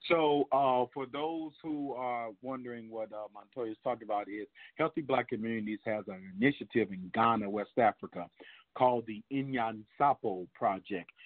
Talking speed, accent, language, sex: 150 wpm, American, English, male